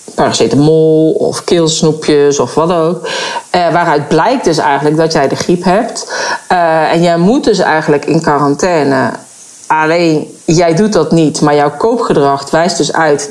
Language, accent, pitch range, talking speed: Dutch, Dutch, 150-215 Hz, 160 wpm